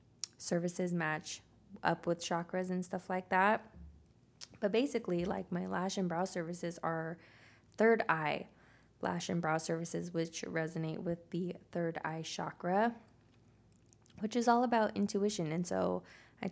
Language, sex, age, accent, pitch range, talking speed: English, female, 20-39, American, 165-190 Hz, 140 wpm